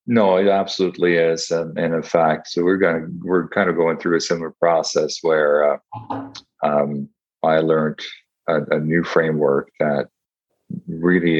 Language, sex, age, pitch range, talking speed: English, male, 40-59, 75-85 Hz, 160 wpm